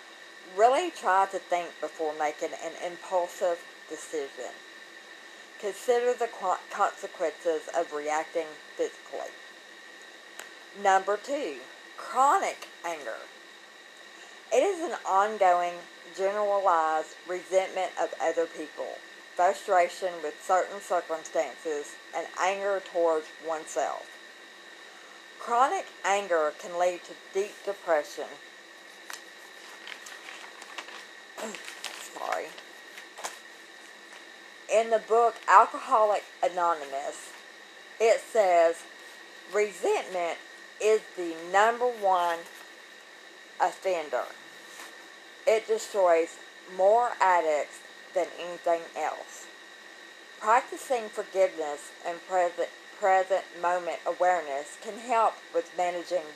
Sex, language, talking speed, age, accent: female, English, 80 wpm, 50-69, American